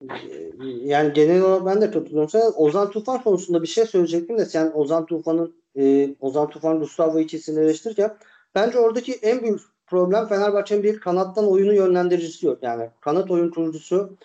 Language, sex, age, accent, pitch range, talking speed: Turkish, male, 50-69, native, 165-220 Hz, 145 wpm